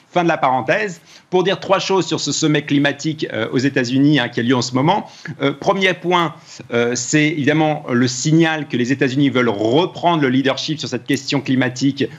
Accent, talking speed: French, 210 wpm